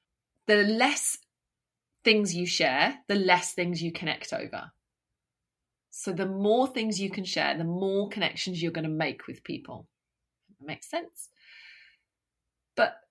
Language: English